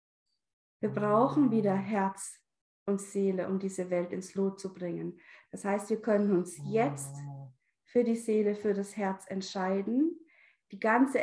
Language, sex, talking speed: German, female, 150 wpm